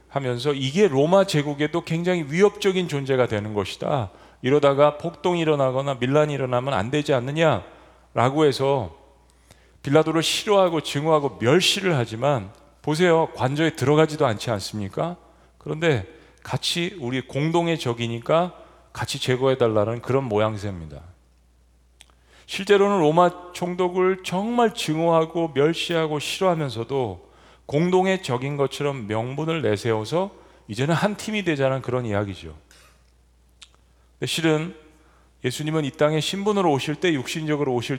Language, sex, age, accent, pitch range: Korean, male, 40-59, native, 120-170 Hz